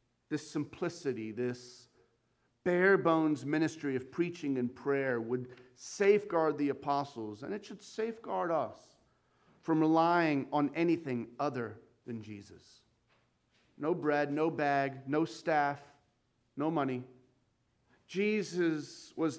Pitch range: 120-155 Hz